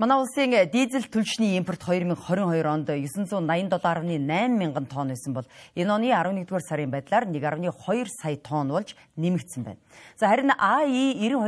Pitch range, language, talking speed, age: 140-215 Hz, English, 135 wpm, 40-59